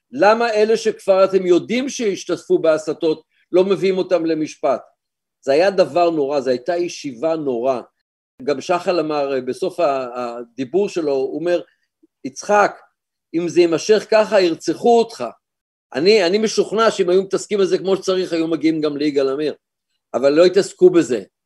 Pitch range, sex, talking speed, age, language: 155-205 Hz, male, 145 wpm, 50-69, Hebrew